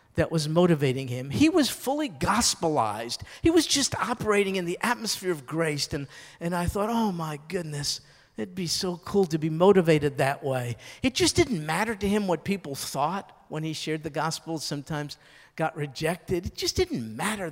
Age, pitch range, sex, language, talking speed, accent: 50-69, 150-205 Hz, male, English, 185 wpm, American